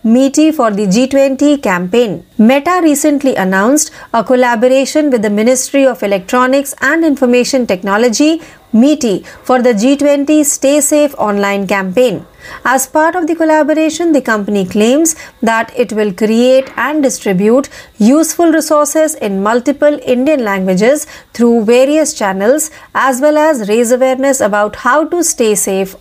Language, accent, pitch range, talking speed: Marathi, native, 220-295 Hz, 135 wpm